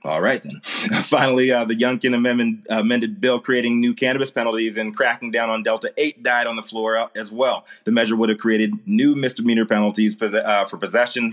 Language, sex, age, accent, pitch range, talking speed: English, male, 30-49, American, 105-120 Hz, 185 wpm